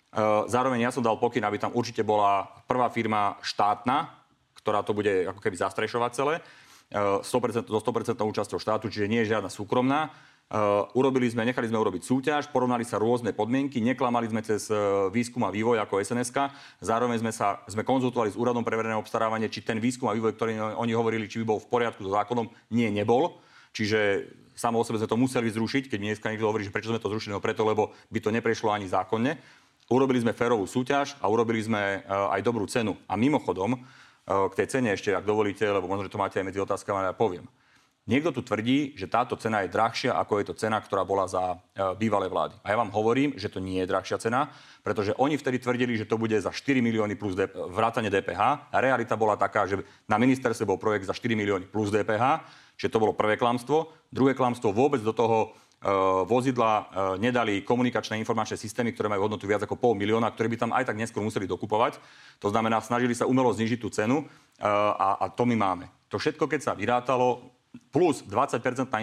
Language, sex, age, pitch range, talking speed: Slovak, male, 40-59, 105-125 Hz, 200 wpm